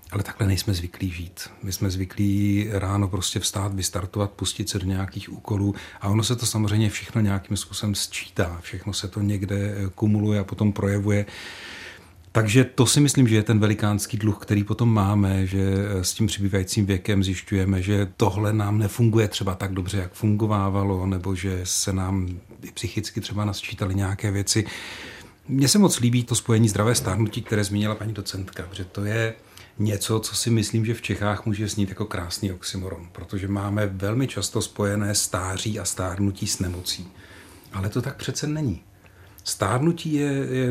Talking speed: 170 wpm